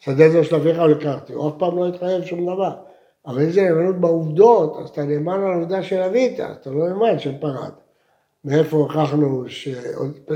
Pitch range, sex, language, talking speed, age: 150-210 Hz, male, Hebrew, 180 wpm, 60-79